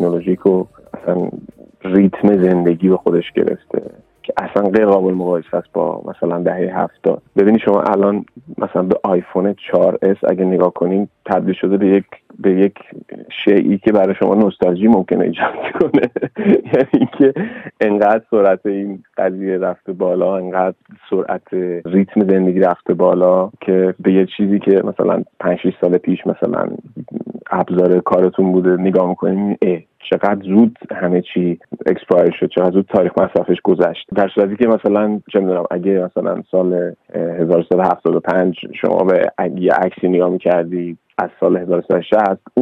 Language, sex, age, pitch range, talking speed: Persian, male, 30-49, 90-100 Hz, 140 wpm